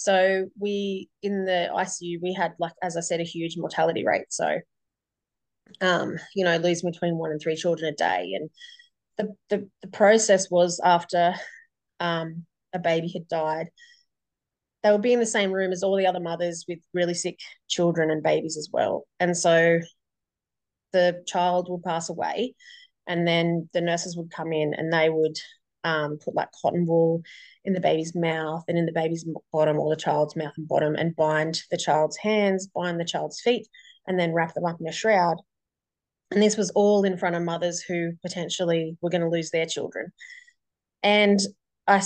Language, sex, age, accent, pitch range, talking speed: English, female, 30-49, Australian, 165-195 Hz, 185 wpm